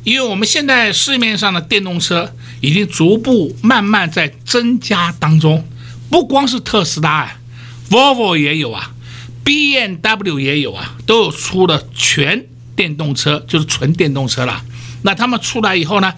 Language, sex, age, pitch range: Chinese, male, 60-79, 120-185 Hz